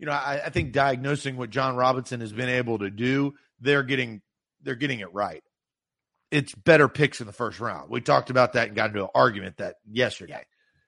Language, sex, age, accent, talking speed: English, male, 40-59, American, 210 wpm